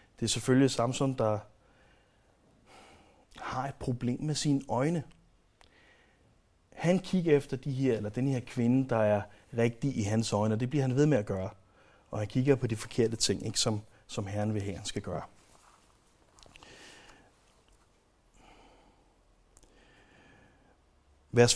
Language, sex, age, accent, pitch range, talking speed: Danish, male, 30-49, native, 110-145 Hz, 140 wpm